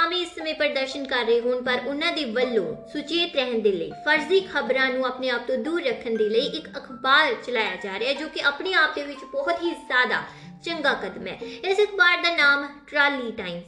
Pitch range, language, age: 250-320 Hz, Punjabi, 20-39